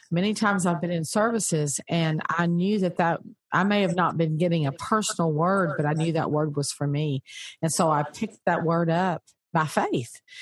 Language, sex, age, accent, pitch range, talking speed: English, female, 50-69, American, 165-205 Hz, 215 wpm